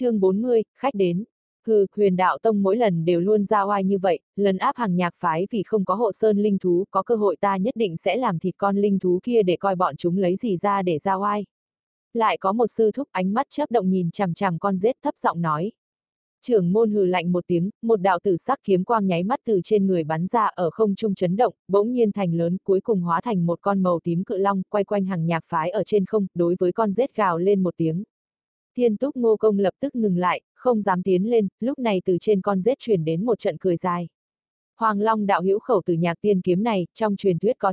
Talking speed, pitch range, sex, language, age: 255 wpm, 180-220 Hz, female, Vietnamese, 20-39